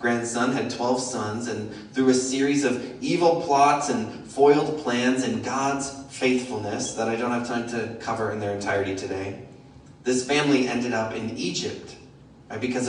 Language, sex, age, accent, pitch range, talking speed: English, male, 30-49, American, 115-140 Hz, 165 wpm